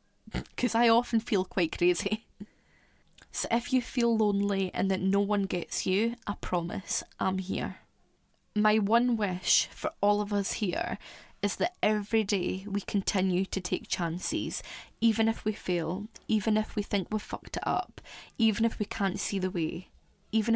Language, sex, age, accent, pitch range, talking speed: English, female, 20-39, British, 185-225 Hz, 170 wpm